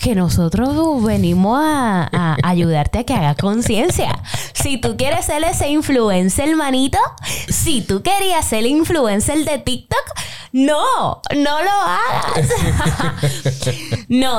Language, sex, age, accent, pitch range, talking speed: Spanish, female, 10-29, American, 175-260 Hz, 125 wpm